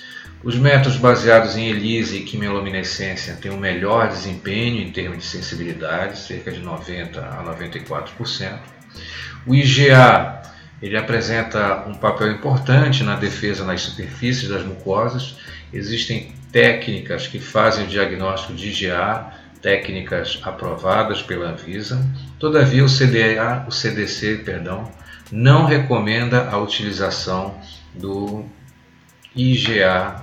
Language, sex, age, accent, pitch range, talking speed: Portuguese, male, 50-69, Brazilian, 95-125 Hz, 115 wpm